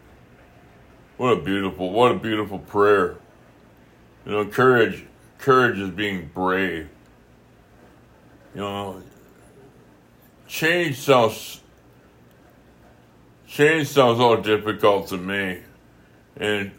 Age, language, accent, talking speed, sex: 60-79, English, American, 90 wpm, male